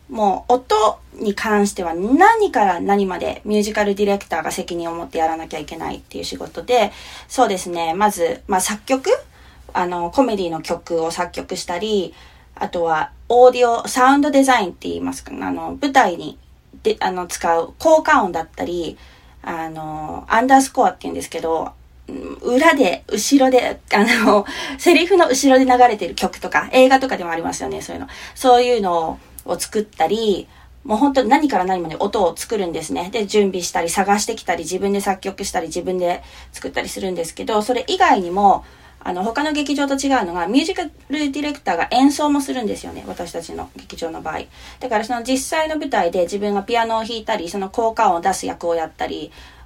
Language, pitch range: English, 175-260 Hz